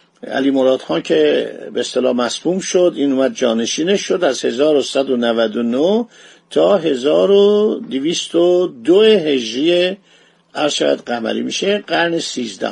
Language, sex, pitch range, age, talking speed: Persian, male, 135-200 Hz, 50-69, 105 wpm